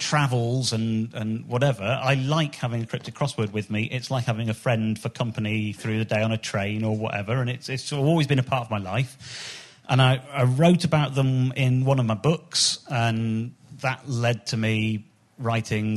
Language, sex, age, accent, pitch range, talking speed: English, male, 40-59, British, 110-140 Hz, 205 wpm